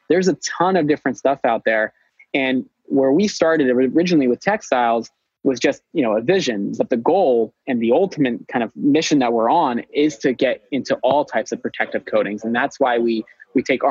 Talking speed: 205 wpm